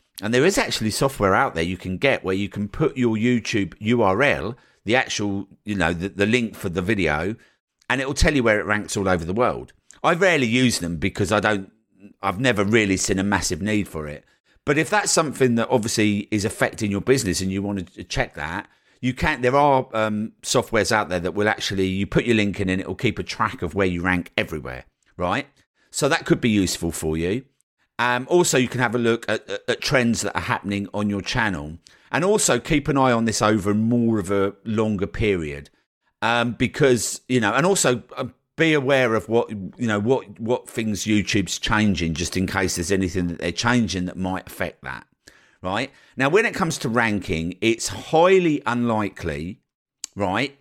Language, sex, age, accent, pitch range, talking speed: English, male, 50-69, British, 95-120 Hz, 210 wpm